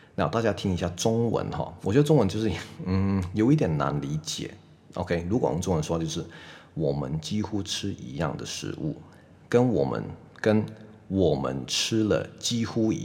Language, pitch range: Chinese, 85-110 Hz